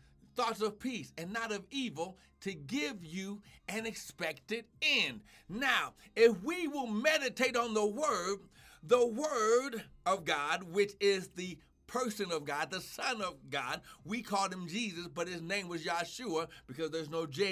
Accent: American